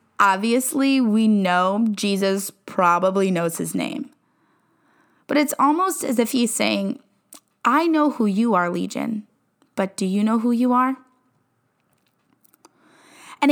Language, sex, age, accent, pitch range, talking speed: English, female, 10-29, American, 200-280 Hz, 130 wpm